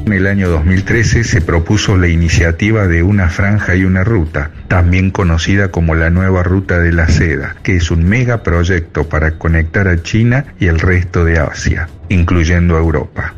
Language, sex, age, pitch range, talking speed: Spanish, male, 50-69, 85-100 Hz, 175 wpm